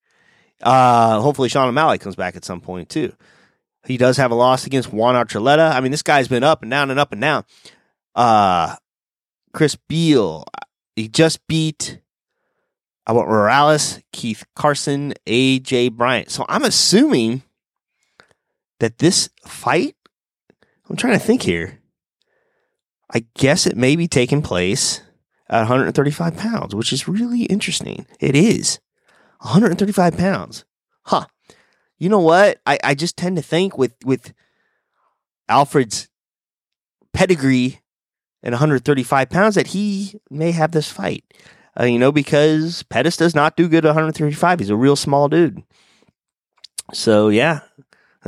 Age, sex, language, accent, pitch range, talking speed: 30-49, male, English, American, 120-170 Hz, 140 wpm